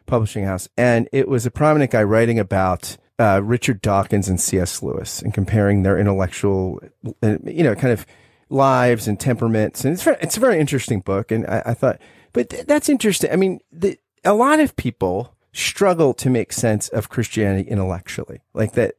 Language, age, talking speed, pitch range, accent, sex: English, 30-49, 185 wpm, 105-150 Hz, American, male